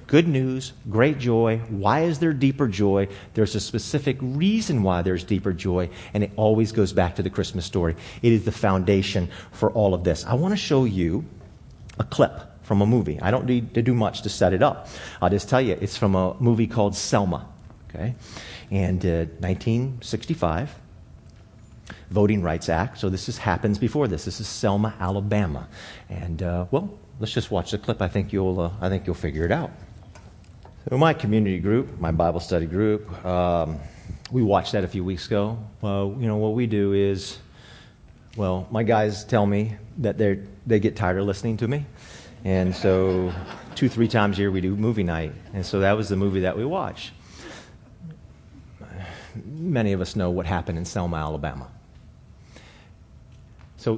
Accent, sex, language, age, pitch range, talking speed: American, male, English, 40-59, 90-115 Hz, 180 wpm